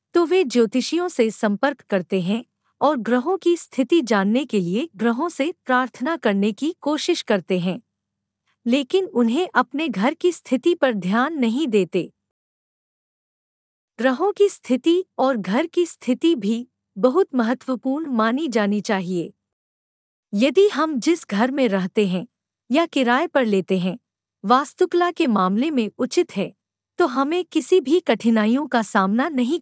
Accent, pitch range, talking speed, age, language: native, 210-320 Hz, 145 wpm, 50-69, Hindi